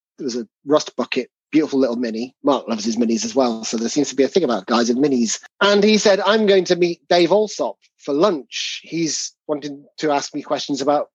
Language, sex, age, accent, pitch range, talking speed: English, male, 30-49, British, 135-165 Hz, 230 wpm